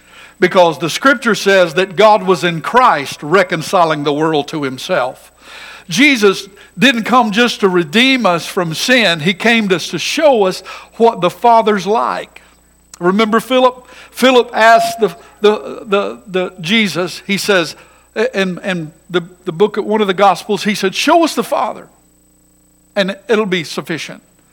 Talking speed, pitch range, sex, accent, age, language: 150 wpm, 155-205 Hz, male, American, 60-79, English